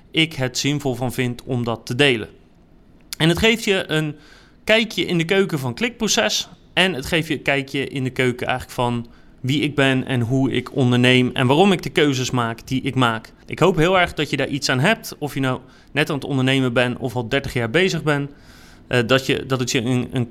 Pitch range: 130-165 Hz